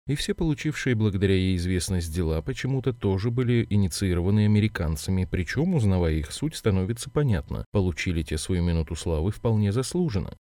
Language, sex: Russian, male